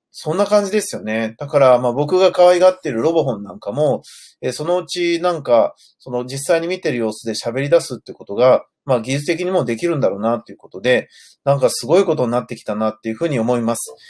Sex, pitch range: male, 125-185 Hz